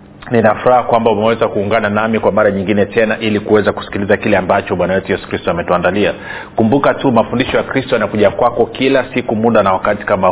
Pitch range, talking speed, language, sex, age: 105-120 Hz, 190 wpm, Swahili, male, 40-59